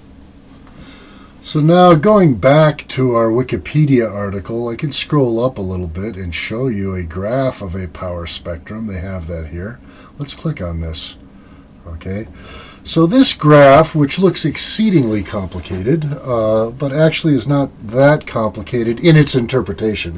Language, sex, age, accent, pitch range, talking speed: English, male, 40-59, American, 95-145 Hz, 150 wpm